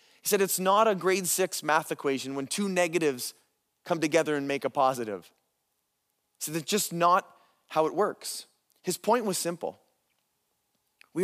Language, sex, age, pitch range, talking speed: English, male, 20-39, 145-185 Hz, 160 wpm